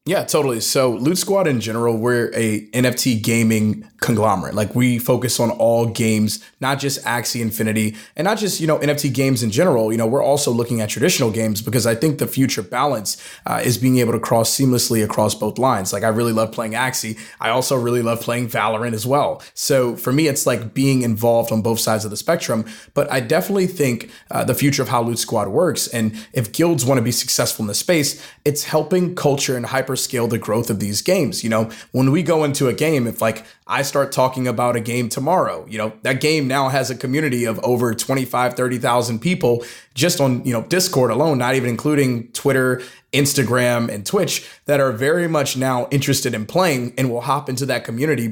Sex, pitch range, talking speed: male, 115-140 Hz, 215 wpm